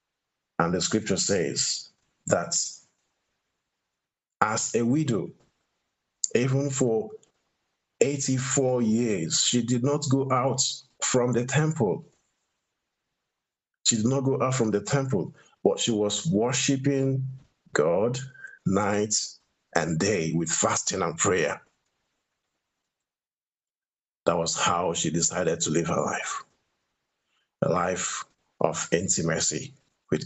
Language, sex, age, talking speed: English, male, 50-69, 105 wpm